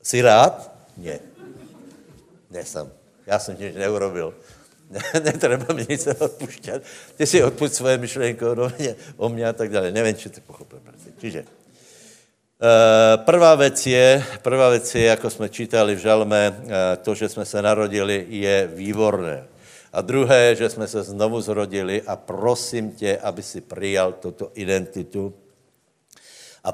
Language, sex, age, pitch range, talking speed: Slovak, male, 60-79, 95-120 Hz, 130 wpm